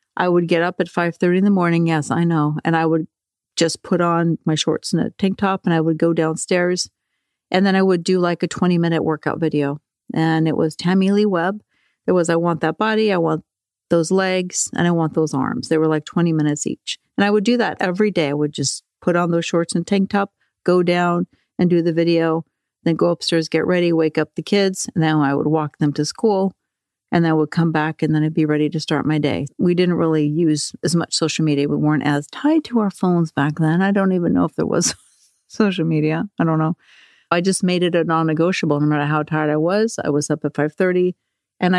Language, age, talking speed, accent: English, 50-69, 240 wpm, American